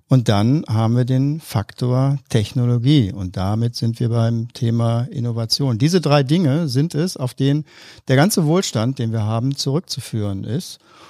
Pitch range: 115-150 Hz